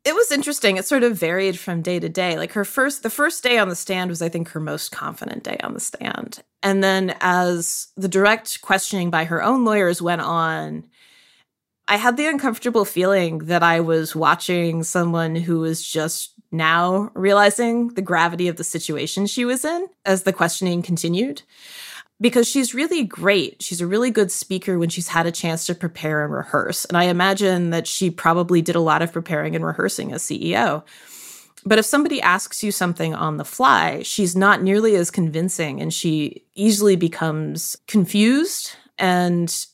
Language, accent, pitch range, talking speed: English, American, 165-210 Hz, 185 wpm